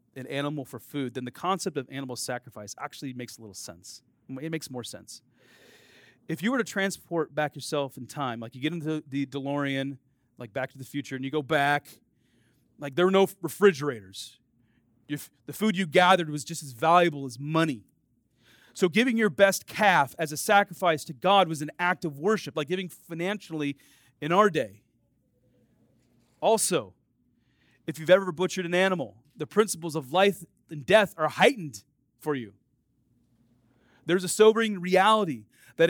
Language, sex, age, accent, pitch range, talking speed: English, male, 30-49, American, 125-190 Hz, 170 wpm